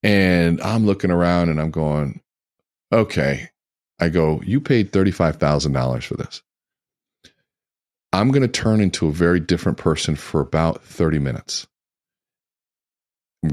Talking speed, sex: 130 wpm, male